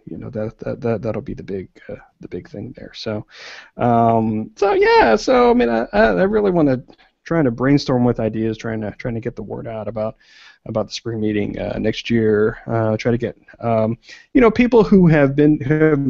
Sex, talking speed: male, 225 wpm